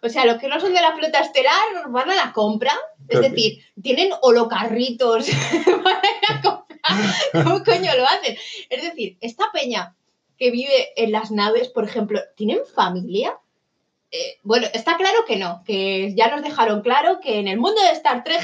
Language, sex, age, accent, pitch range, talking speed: Spanish, female, 20-39, Spanish, 225-370 Hz, 180 wpm